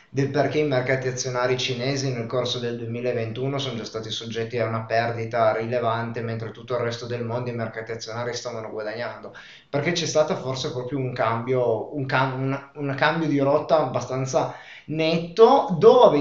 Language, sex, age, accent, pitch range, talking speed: Italian, male, 20-39, native, 120-140 Hz, 165 wpm